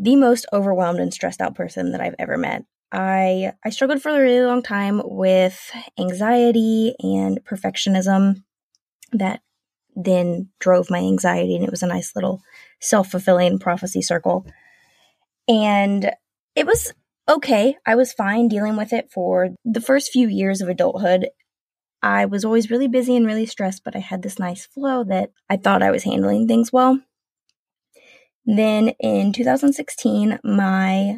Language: English